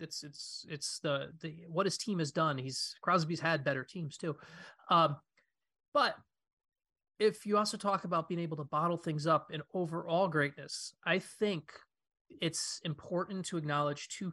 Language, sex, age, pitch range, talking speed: English, male, 30-49, 145-170 Hz, 165 wpm